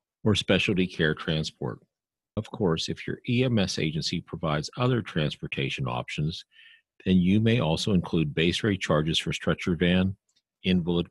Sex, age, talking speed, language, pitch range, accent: male, 50-69, 140 wpm, English, 80-110 Hz, American